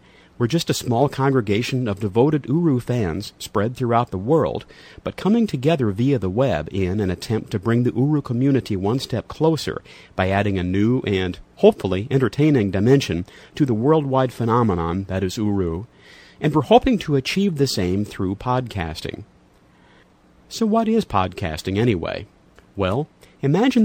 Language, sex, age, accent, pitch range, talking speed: English, male, 50-69, American, 100-140 Hz, 155 wpm